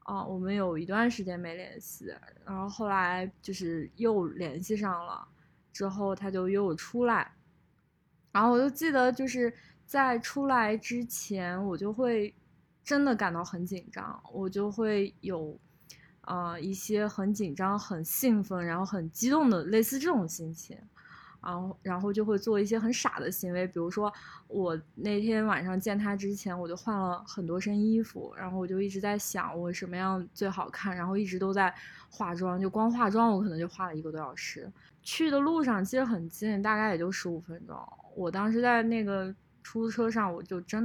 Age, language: 20-39, Chinese